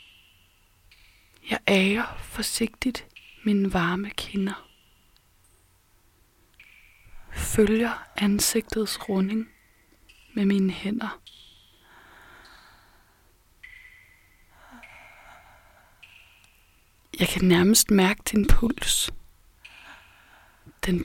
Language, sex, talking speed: Danish, female, 55 wpm